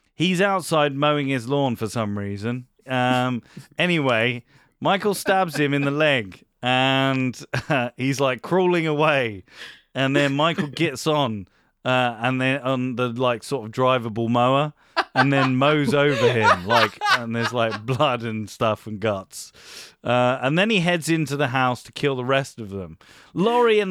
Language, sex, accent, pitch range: English, male, British, 120-150 Hz